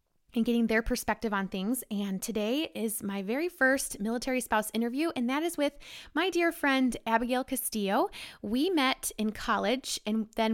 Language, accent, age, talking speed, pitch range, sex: English, American, 20-39, 170 wpm, 200-235 Hz, female